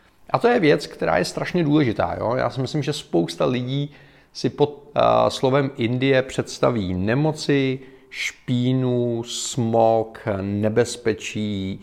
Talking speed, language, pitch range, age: 125 wpm, Czech, 105-130 Hz, 40-59